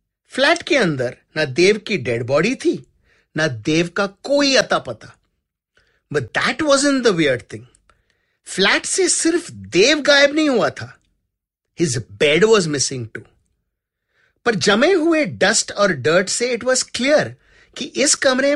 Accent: Indian